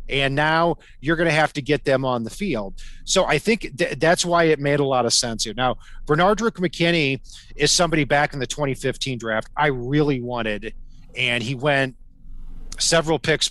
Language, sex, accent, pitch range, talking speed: English, male, American, 125-160 Hz, 185 wpm